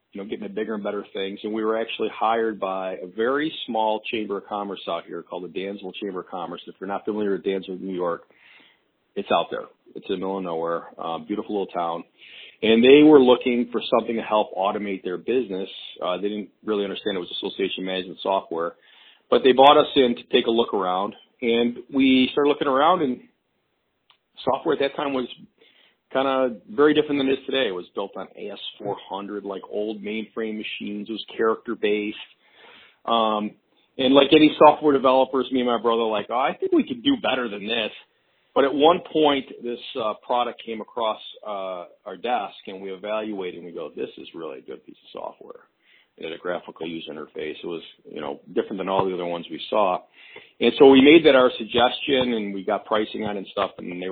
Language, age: English, 40-59